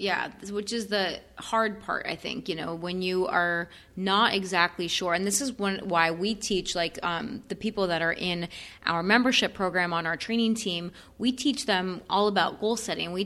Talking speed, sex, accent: 205 wpm, female, American